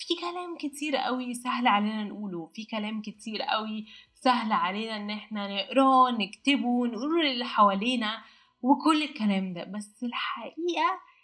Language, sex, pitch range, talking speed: Arabic, female, 200-255 Hz, 135 wpm